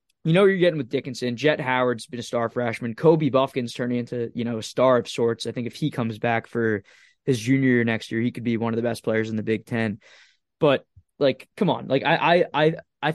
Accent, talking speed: American, 255 wpm